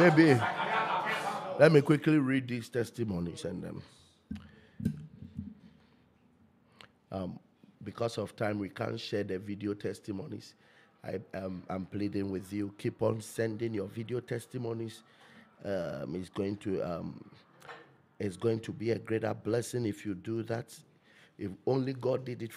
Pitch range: 105-135 Hz